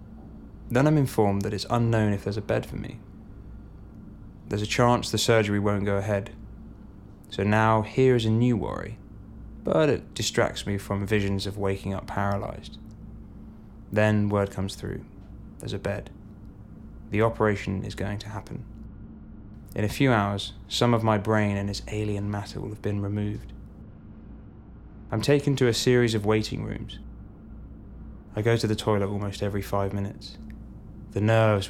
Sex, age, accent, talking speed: male, 10-29, British, 160 wpm